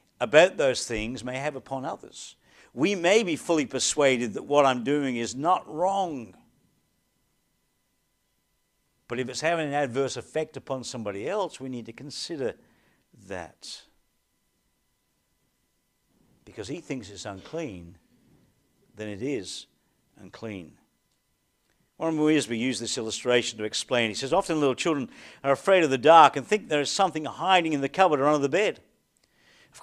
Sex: male